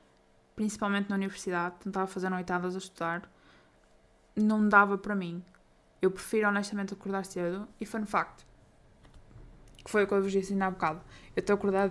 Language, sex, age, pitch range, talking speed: Portuguese, female, 10-29, 170-205 Hz, 170 wpm